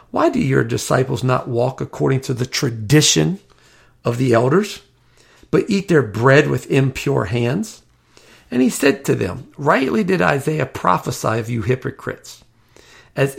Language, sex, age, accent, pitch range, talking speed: English, male, 50-69, American, 120-155 Hz, 150 wpm